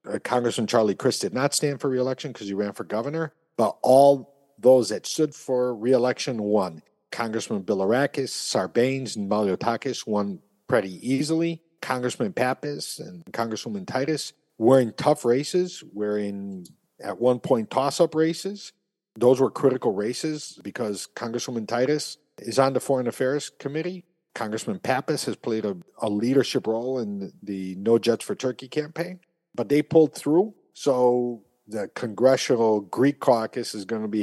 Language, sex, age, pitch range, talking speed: English, male, 50-69, 110-140 Hz, 155 wpm